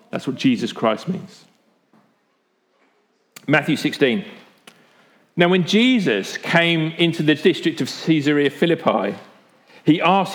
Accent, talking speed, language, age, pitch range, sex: British, 110 wpm, English, 40-59, 135-180 Hz, male